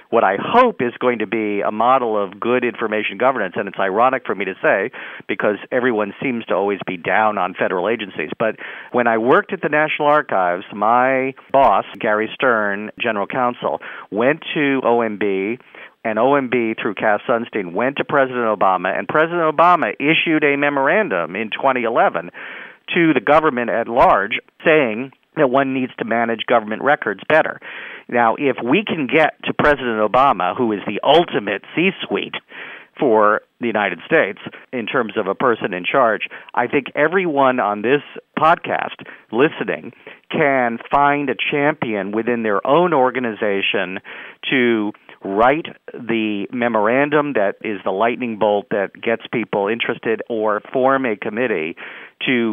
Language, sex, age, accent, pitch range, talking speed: English, male, 50-69, American, 110-135 Hz, 155 wpm